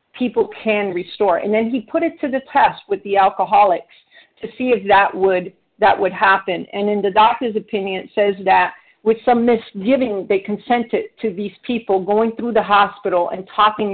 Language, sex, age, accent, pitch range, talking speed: English, female, 50-69, American, 190-230 Hz, 190 wpm